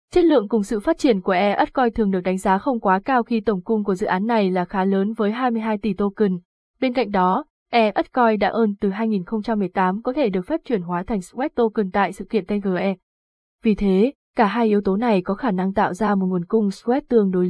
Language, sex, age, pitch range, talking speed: Vietnamese, female, 20-39, 190-240 Hz, 235 wpm